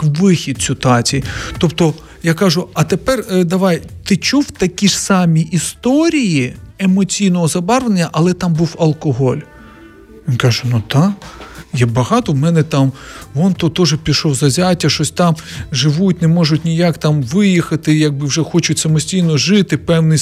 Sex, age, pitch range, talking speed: male, 40-59, 155-195 Hz, 140 wpm